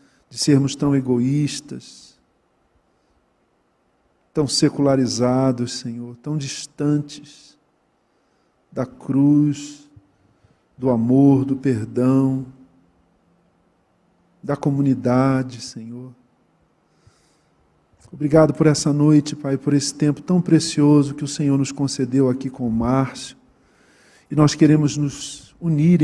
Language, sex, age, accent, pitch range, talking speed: Portuguese, male, 40-59, Brazilian, 130-145 Hz, 95 wpm